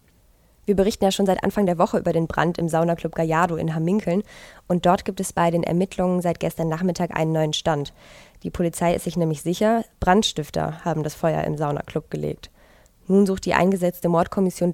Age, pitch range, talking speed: 20-39, 165-185 Hz, 190 wpm